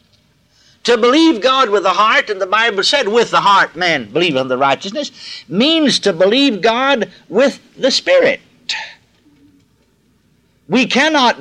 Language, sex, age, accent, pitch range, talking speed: English, male, 60-79, American, 200-290 Hz, 140 wpm